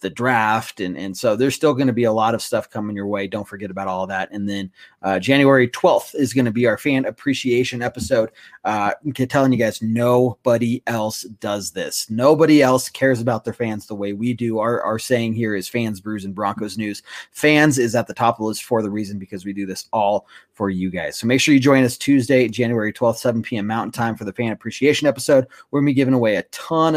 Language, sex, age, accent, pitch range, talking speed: English, male, 30-49, American, 110-140 Hz, 240 wpm